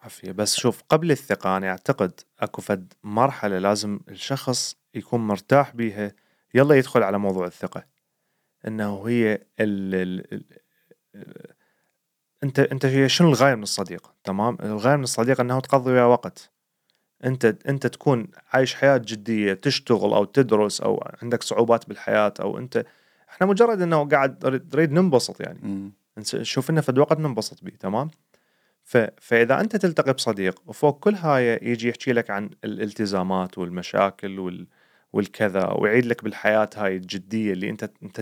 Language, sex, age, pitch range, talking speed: Arabic, male, 30-49, 100-135 Hz, 135 wpm